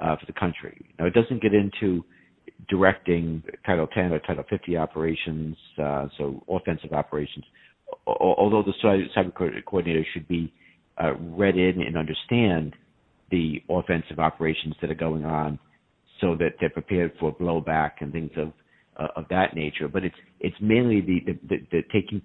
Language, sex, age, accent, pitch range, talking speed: English, male, 50-69, American, 80-90 Hz, 160 wpm